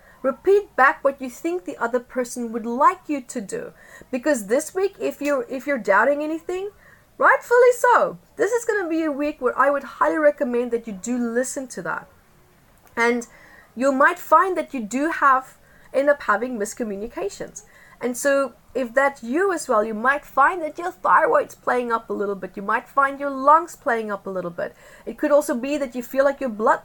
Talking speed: 205 wpm